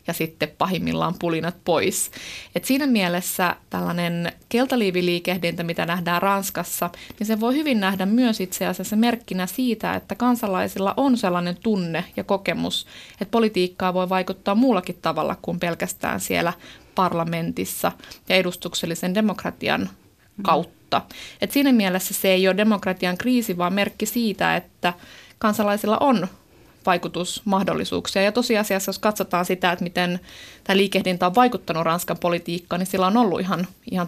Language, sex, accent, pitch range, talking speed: Finnish, female, native, 175-205 Hz, 140 wpm